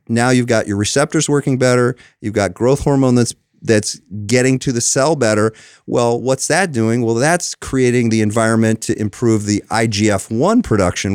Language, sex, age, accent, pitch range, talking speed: English, male, 40-59, American, 105-125 Hz, 170 wpm